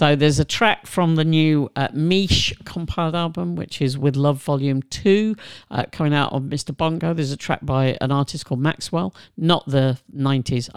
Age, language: 50-69, English